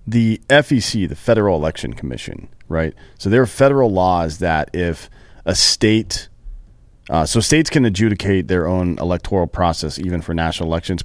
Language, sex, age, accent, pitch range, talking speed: English, male, 40-59, American, 85-100 Hz, 160 wpm